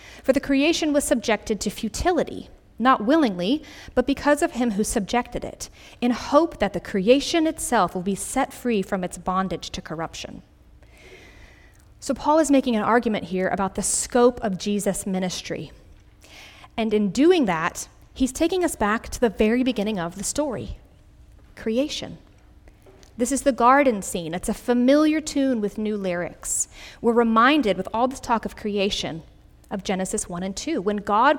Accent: American